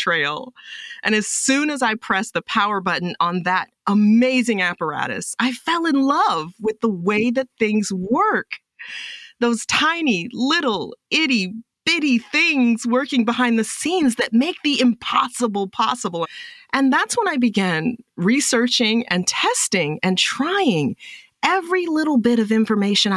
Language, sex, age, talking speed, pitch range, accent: English, female, 30-49, 140 wpm, 180-255 Hz, American